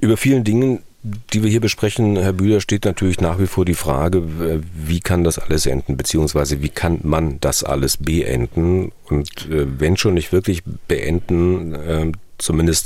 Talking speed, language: 165 wpm, German